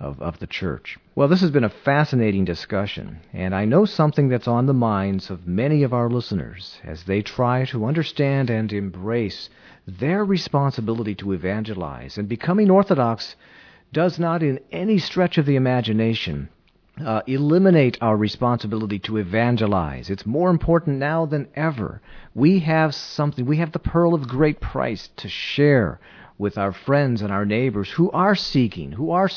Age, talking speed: 40-59, 165 wpm